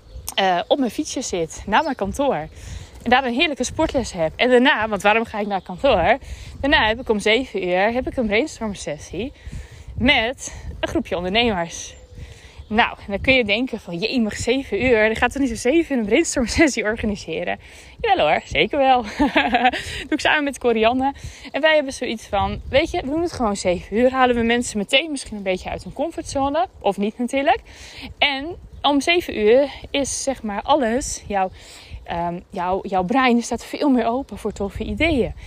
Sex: female